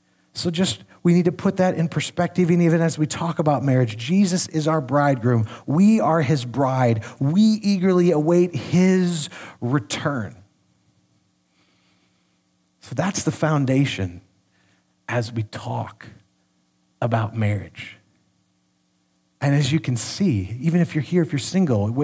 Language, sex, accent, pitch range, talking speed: English, male, American, 140-200 Hz, 135 wpm